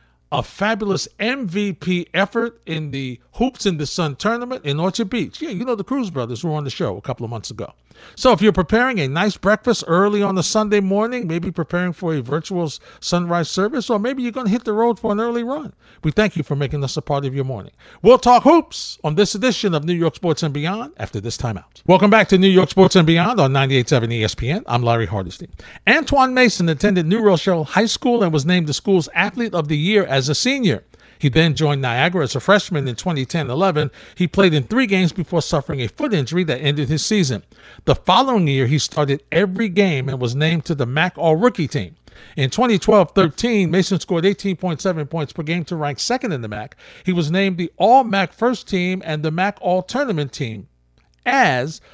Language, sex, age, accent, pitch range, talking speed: English, male, 50-69, American, 145-205 Hz, 220 wpm